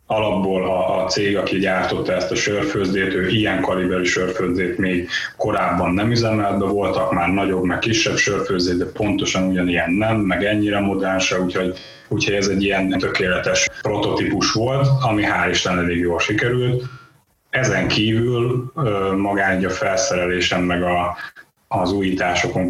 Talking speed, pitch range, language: 135 wpm, 90-95 Hz, Hungarian